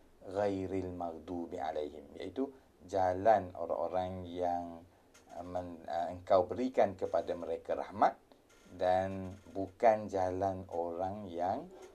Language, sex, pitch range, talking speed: Malay, male, 85-95 Hz, 100 wpm